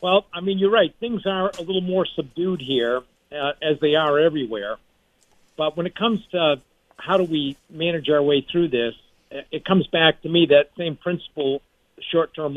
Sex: male